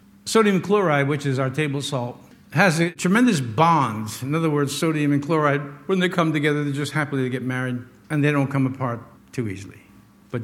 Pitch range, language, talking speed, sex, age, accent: 140-200 Hz, English, 200 wpm, male, 60-79, American